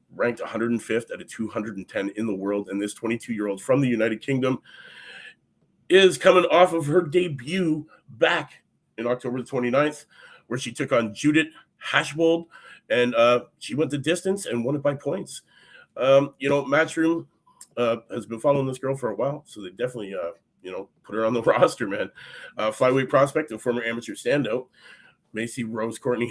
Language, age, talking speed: English, 30-49, 185 wpm